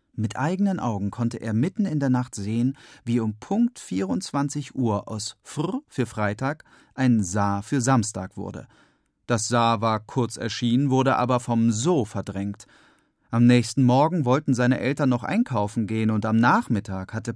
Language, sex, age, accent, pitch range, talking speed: German, male, 40-59, German, 110-135 Hz, 165 wpm